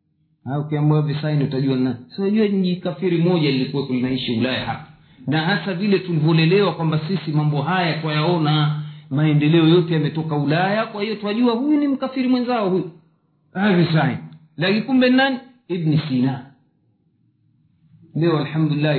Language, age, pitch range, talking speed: Swahili, 50-69, 135-170 Hz, 135 wpm